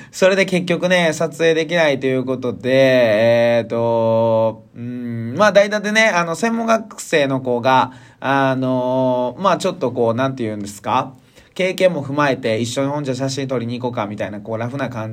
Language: Japanese